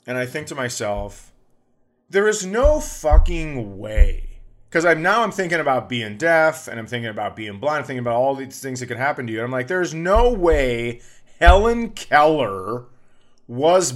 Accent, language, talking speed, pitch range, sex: American, English, 185 wpm, 125-170 Hz, male